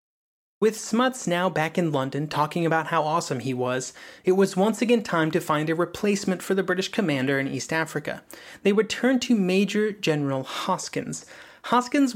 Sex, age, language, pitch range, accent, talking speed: male, 30-49, English, 150-195 Hz, American, 175 wpm